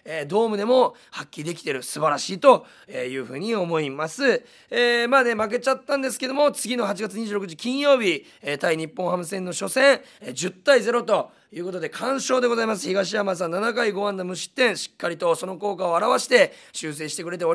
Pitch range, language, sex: 175-250 Hz, Japanese, male